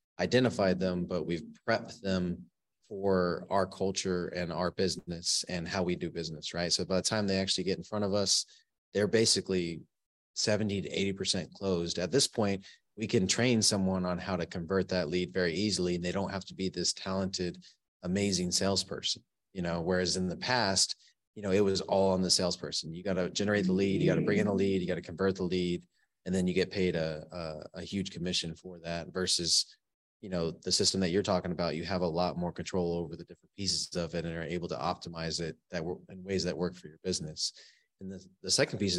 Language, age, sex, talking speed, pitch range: English, 30-49, male, 225 wpm, 90-100 Hz